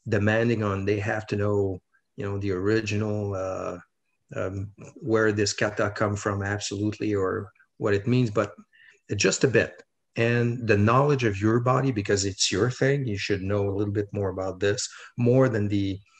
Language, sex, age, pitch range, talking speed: English, male, 40-59, 105-125 Hz, 180 wpm